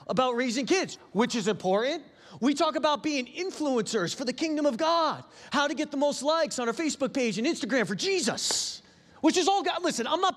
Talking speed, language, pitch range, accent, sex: 215 wpm, English, 190-265 Hz, American, male